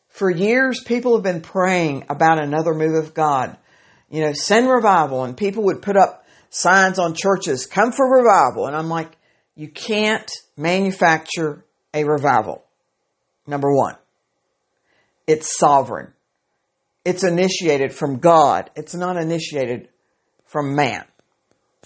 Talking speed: 130 wpm